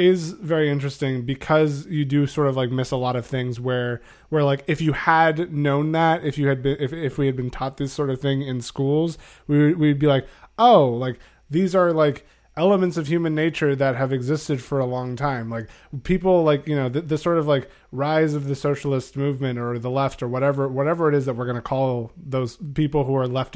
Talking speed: 230 wpm